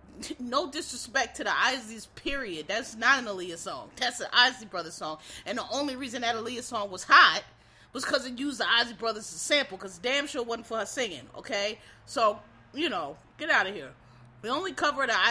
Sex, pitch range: female, 185-260 Hz